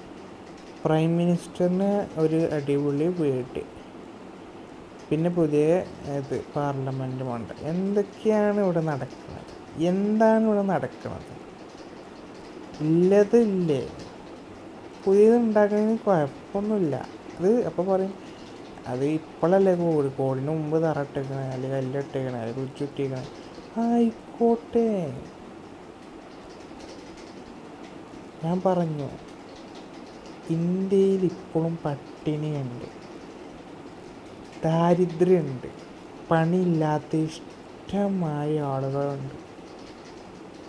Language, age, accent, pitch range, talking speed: Malayalam, 30-49, native, 145-185 Hz, 65 wpm